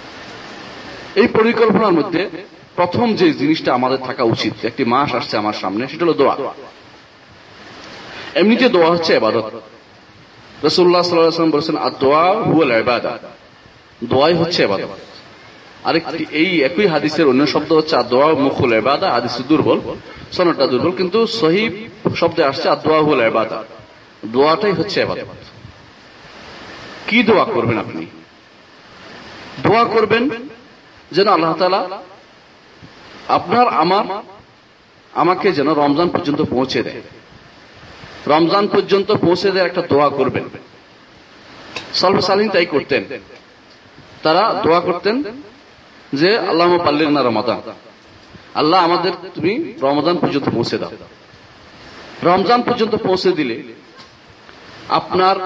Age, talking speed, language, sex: 40-59, 60 wpm, Bengali, male